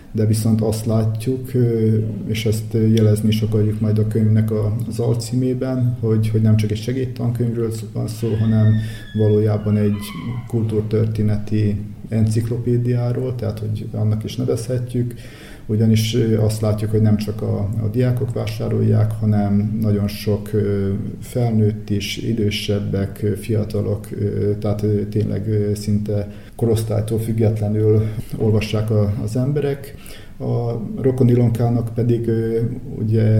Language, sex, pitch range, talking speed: Hungarian, male, 105-115 Hz, 110 wpm